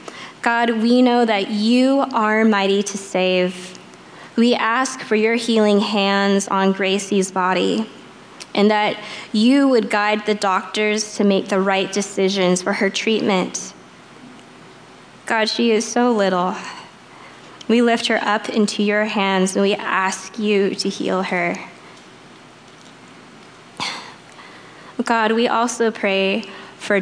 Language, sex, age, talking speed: English, female, 10-29, 125 wpm